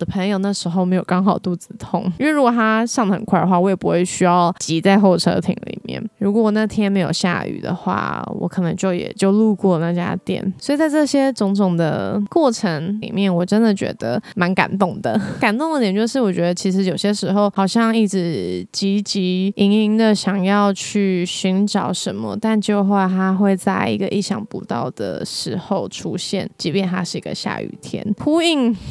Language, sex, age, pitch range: Chinese, female, 20-39, 180-215 Hz